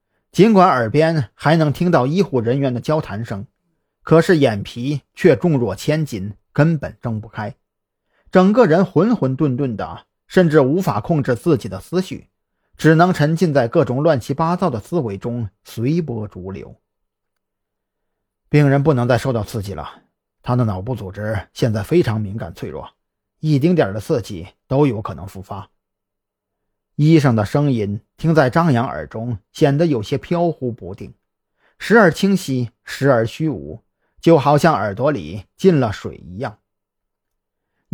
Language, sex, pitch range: Chinese, male, 105-160 Hz